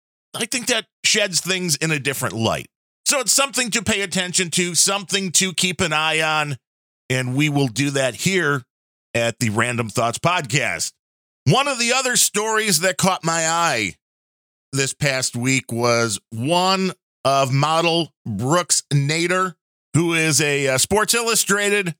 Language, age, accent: English, 40-59, American